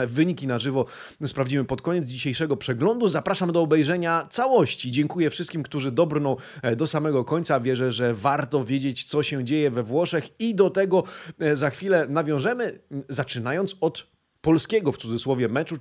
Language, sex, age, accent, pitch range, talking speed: Polish, male, 30-49, native, 130-165 Hz, 150 wpm